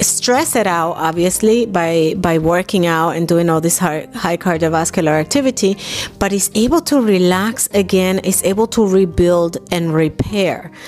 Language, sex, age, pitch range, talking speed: English, female, 30-49, 165-210 Hz, 155 wpm